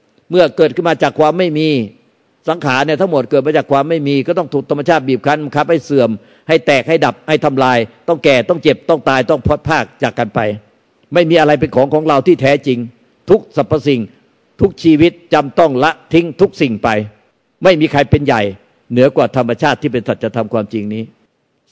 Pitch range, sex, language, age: 115-150 Hz, male, Thai, 50-69